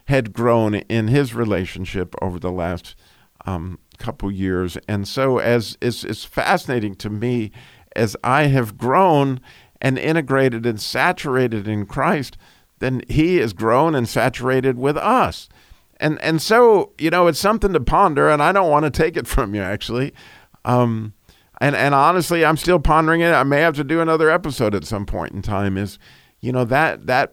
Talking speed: 180 wpm